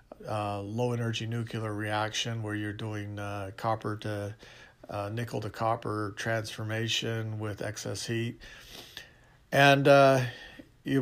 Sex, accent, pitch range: male, American, 105-120 Hz